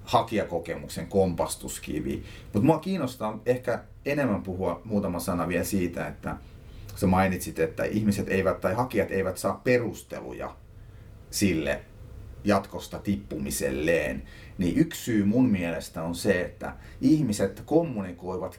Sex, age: male, 30-49